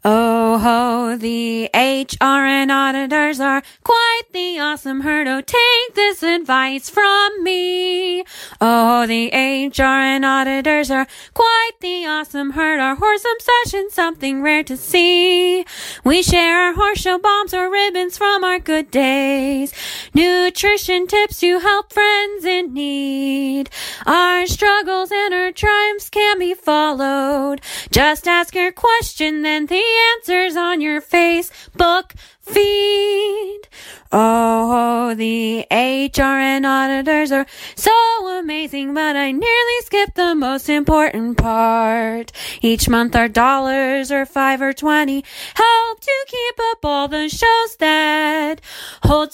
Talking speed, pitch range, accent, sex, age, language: 125 wpm, 275-400 Hz, American, female, 20-39, English